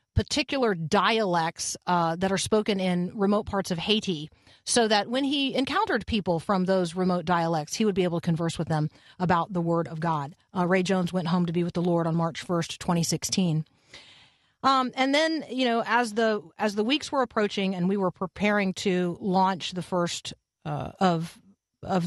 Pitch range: 170-195 Hz